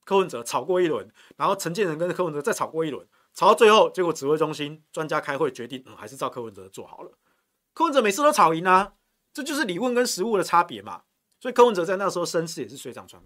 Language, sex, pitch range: Chinese, male, 145-220 Hz